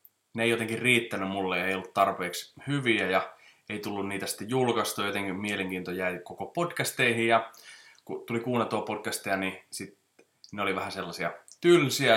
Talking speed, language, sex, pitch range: 165 wpm, Finnish, male, 95-115 Hz